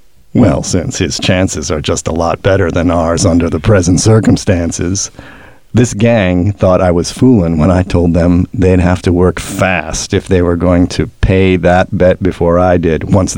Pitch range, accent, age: 85-95 Hz, American, 50-69